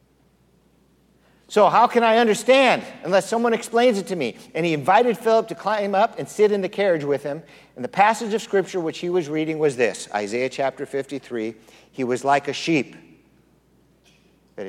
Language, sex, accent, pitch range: English, male, American, 120-175 Hz